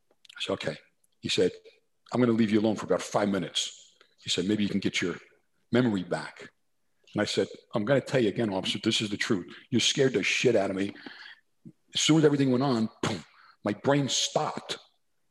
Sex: male